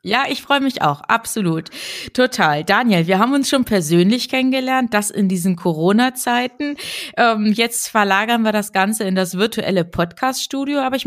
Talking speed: 165 wpm